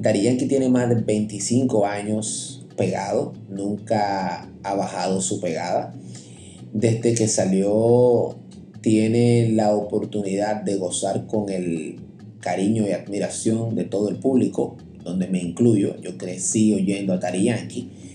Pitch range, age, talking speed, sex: 100-115 Hz, 30-49, 120 wpm, male